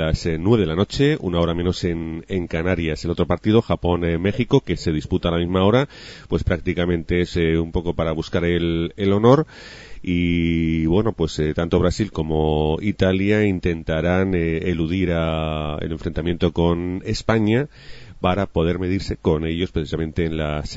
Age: 30-49